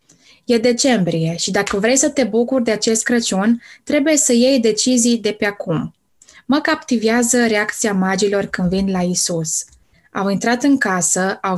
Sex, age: female, 20-39